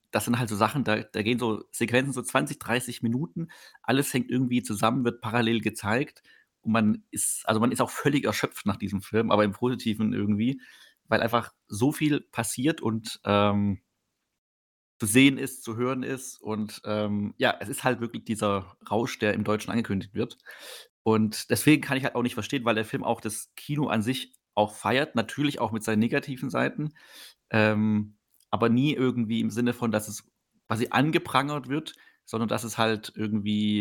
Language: German